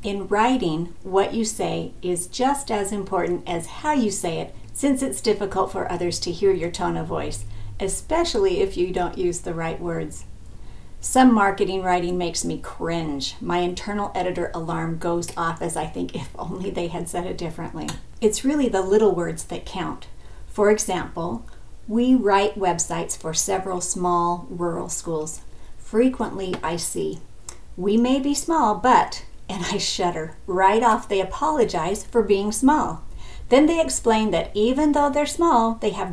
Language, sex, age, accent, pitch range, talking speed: English, female, 50-69, American, 170-225 Hz, 165 wpm